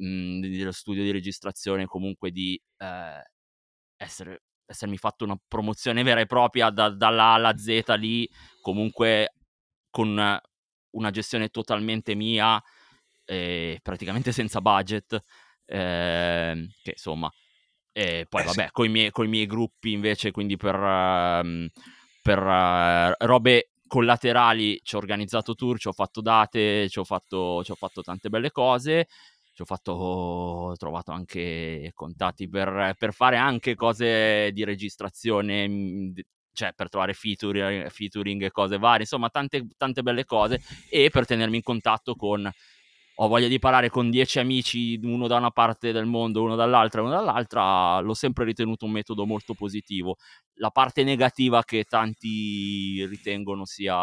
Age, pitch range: 20-39, 95-115 Hz